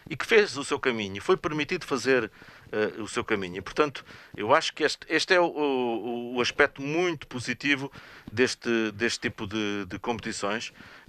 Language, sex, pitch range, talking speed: Portuguese, male, 105-145 Hz, 160 wpm